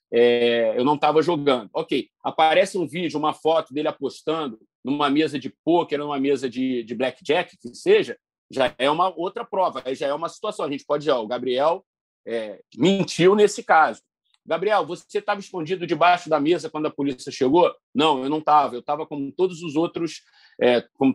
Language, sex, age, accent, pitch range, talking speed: Portuguese, male, 40-59, Brazilian, 150-205 Hz, 180 wpm